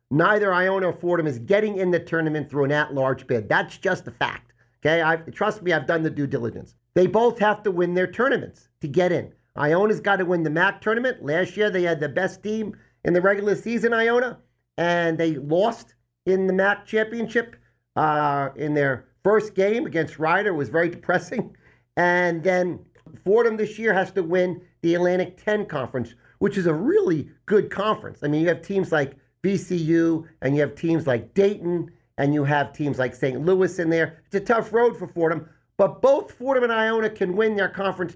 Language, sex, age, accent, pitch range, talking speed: English, male, 40-59, American, 150-200 Hz, 200 wpm